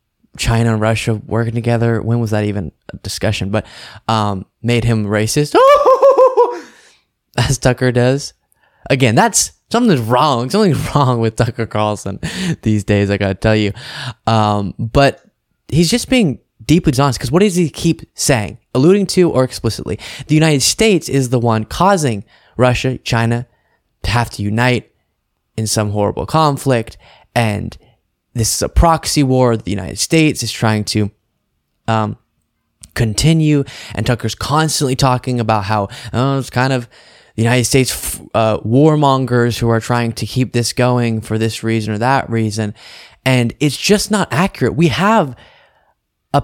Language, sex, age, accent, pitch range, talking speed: English, male, 20-39, American, 110-140 Hz, 150 wpm